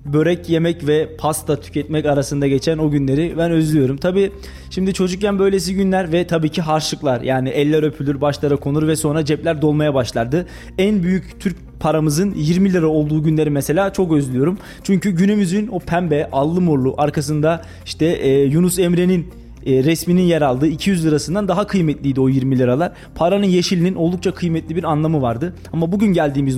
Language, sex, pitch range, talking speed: Turkish, male, 145-175 Hz, 160 wpm